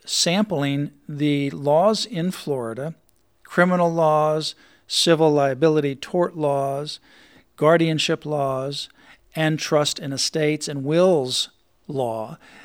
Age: 50-69